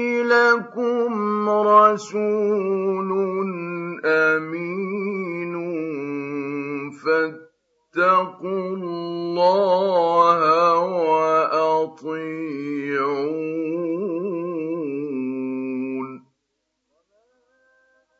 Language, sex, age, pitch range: Arabic, male, 50-69, 190-290 Hz